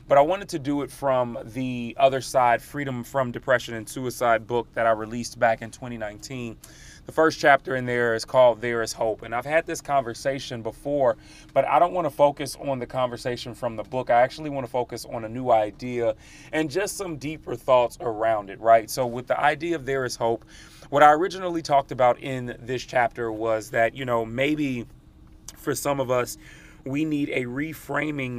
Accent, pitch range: American, 120-140 Hz